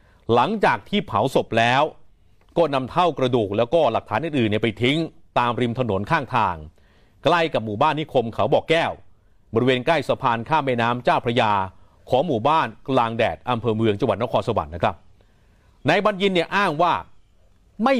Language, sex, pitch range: Thai, male, 105-145 Hz